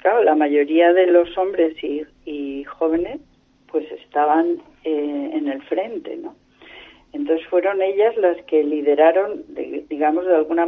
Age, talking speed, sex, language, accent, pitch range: 40-59, 140 wpm, female, Spanish, Spanish, 160-225 Hz